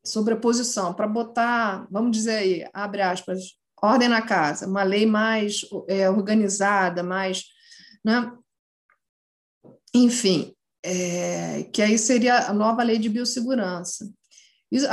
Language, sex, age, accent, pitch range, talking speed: Portuguese, female, 40-59, Brazilian, 205-250 Hz, 125 wpm